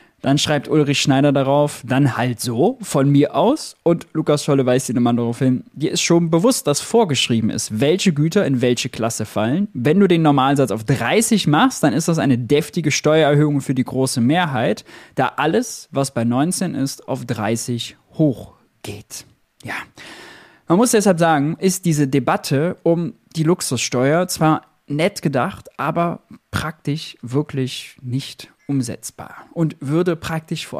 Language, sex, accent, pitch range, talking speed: German, male, German, 130-170 Hz, 160 wpm